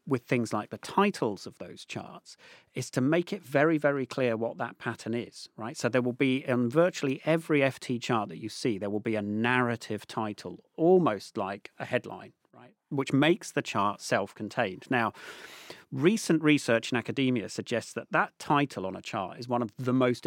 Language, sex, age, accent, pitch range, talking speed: English, male, 40-59, British, 110-145 Hz, 190 wpm